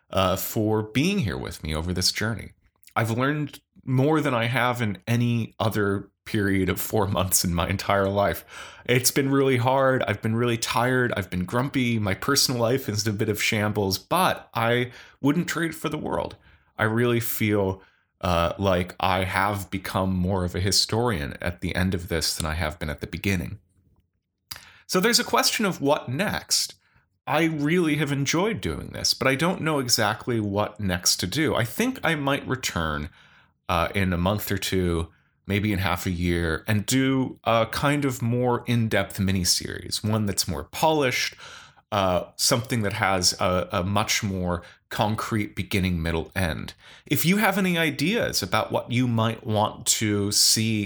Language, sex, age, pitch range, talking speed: English, male, 30-49, 95-125 Hz, 180 wpm